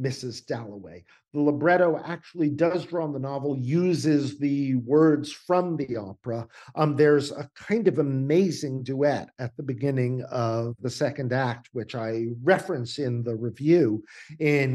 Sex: male